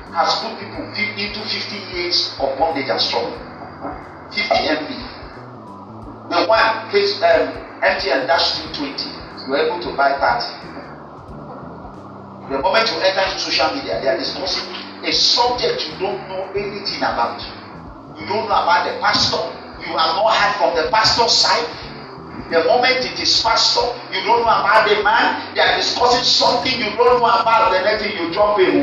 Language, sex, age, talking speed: English, male, 50-69, 160 wpm